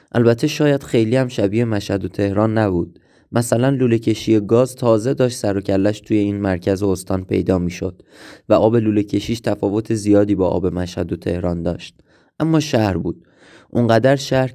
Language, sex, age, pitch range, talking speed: Persian, male, 20-39, 95-115 Hz, 170 wpm